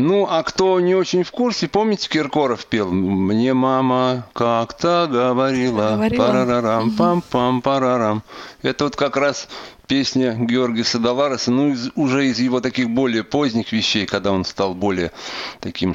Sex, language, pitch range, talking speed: male, Russian, 115-160 Hz, 145 wpm